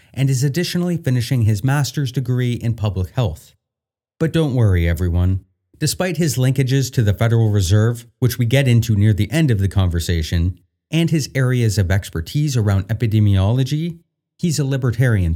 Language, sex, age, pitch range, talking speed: English, male, 30-49, 105-145 Hz, 160 wpm